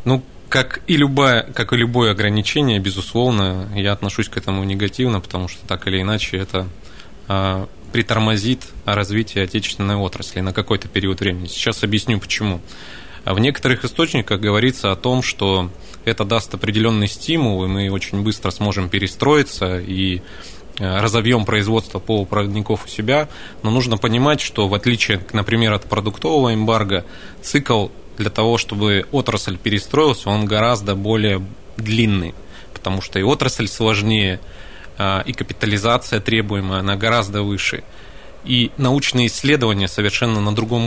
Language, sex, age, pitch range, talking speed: Russian, male, 20-39, 95-115 Hz, 140 wpm